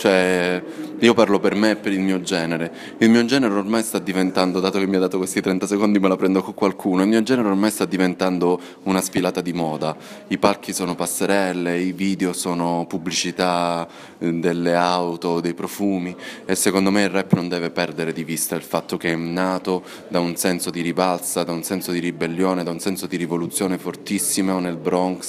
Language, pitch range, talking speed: Italian, 85-95 Hz, 200 wpm